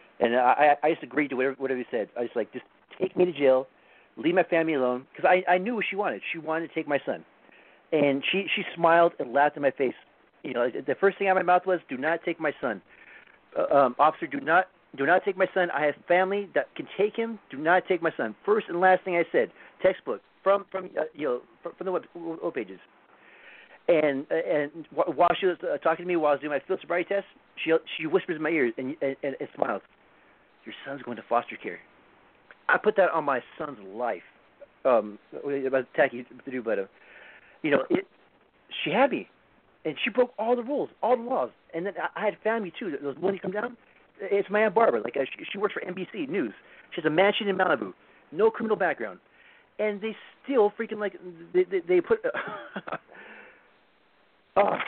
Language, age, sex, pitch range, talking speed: English, 40-59, male, 150-205 Hz, 220 wpm